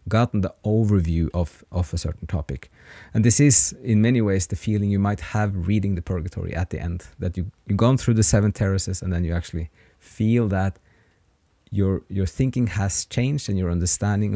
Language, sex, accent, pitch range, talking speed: English, male, Norwegian, 90-110 Hz, 195 wpm